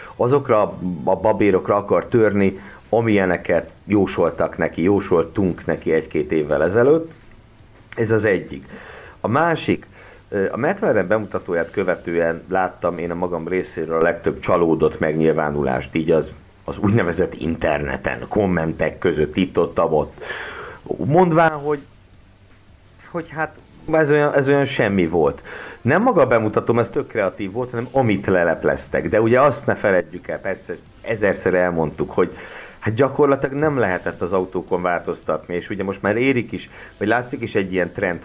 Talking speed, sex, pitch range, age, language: 140 wpm, male, 90-115 Hz, 50-69, Hungarian